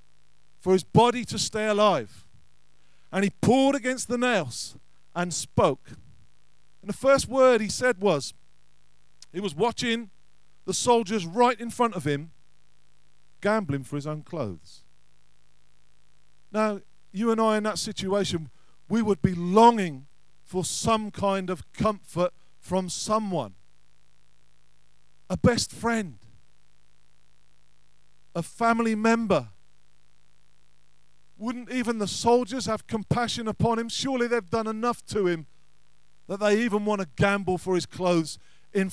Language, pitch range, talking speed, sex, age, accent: English, 150-230 Hz, 130 wpm, male, 50-69, British